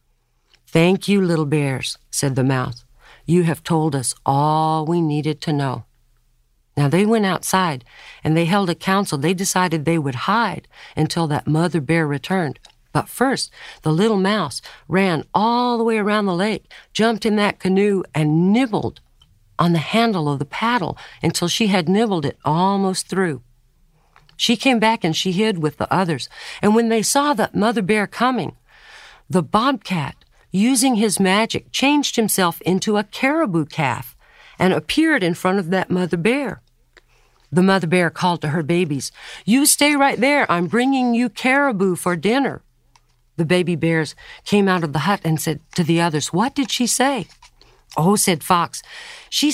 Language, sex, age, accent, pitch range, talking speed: English, female, 50-69, American, 155-220 Hz, 170 wpm